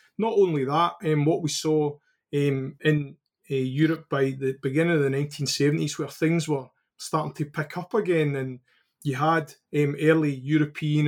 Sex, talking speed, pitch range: male, 170 wpm, 135-155 Hz